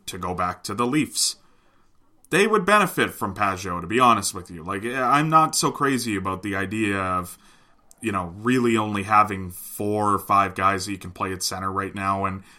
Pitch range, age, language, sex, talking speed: 95-115 Hz, 20-39, English, male, 205 wpm